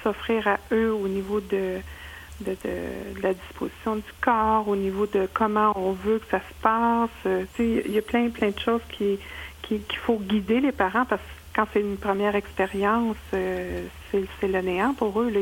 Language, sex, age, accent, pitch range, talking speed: French, female, 50-69, Canadian, 185-215 Hz, 190 wpm